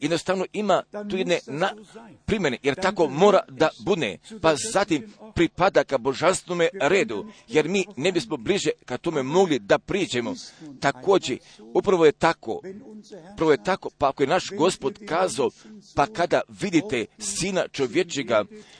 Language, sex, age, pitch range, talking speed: Croatian, male, 50-69, 160-215 Hz, 140 wpm